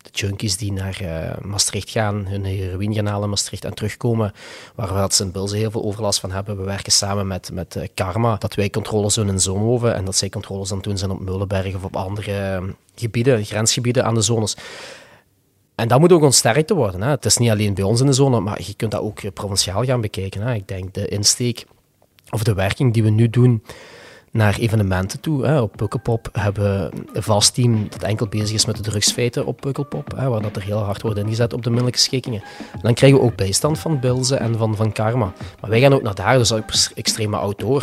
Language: Dutch